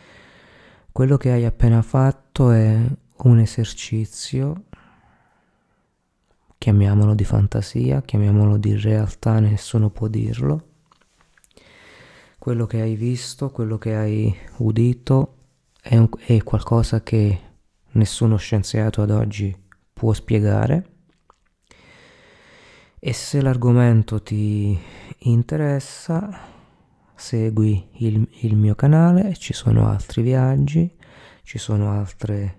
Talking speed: 95 wpm